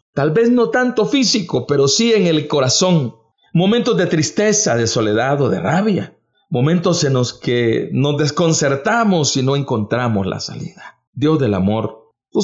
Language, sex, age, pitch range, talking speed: English, male, 50-69, 135-195 Hz, 160 wpm